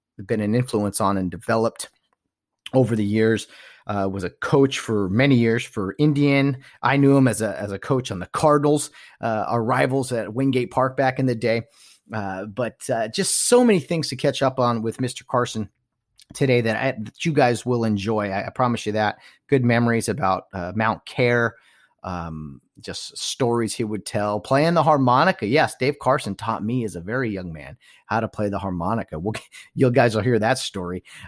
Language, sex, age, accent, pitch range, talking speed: English, male, 30-49, American, 110-135 Hz, 195 wpm